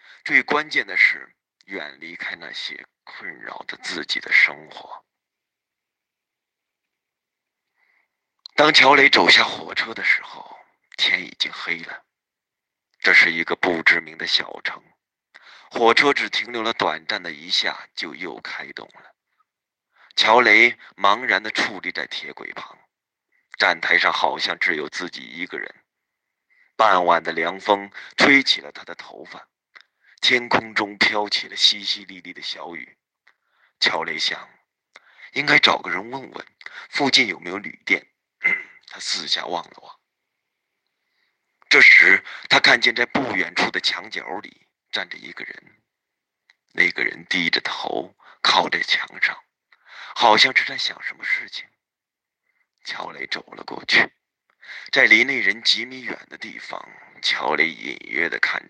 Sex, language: male, Chinese